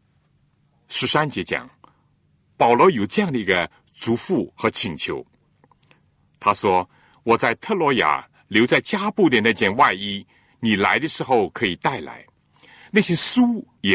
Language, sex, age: Chinese, male, 60-79